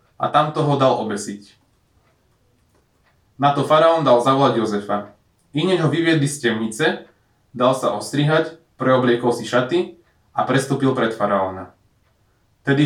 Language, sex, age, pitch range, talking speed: Slovak, male, 20-39, 110-150 Hz, 125 wpm